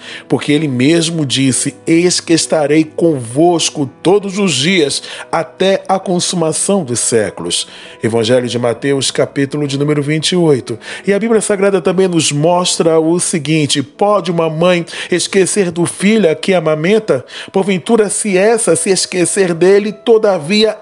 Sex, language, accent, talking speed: male, Portuguese, Brazilian, 135 wpm